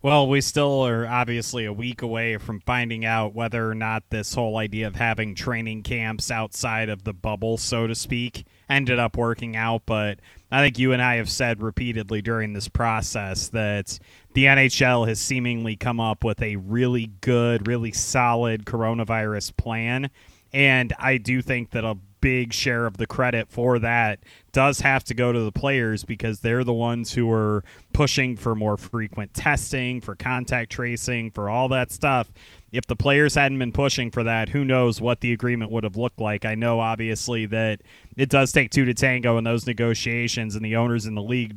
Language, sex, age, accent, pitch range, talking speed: English, male, 30-49, American, 110-125 Hz, 190 wpm